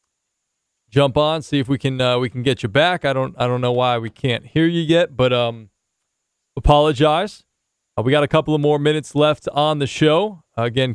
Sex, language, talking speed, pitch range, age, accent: male, English, 220 wpm, 130-160 Hz, 20-39, American